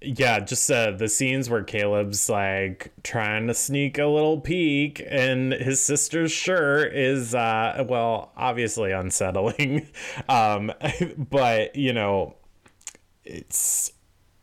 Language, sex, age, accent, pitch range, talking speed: English, male, 20-39, American, 105-140 Hz, 115 wpm